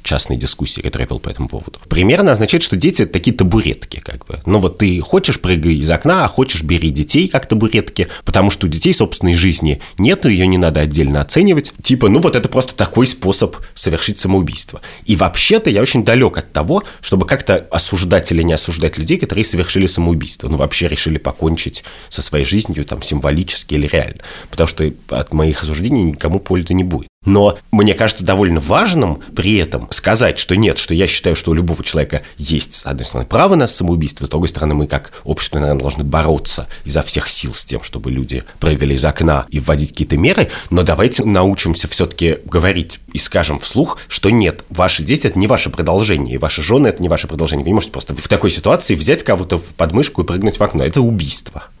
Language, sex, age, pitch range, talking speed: Russian, male, 30-49, 75-100 Hz, 200 wpm